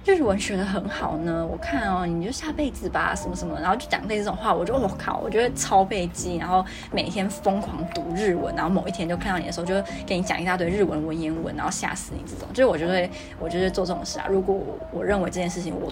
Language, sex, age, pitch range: Chinese, female, 20-39, 175-215 Hz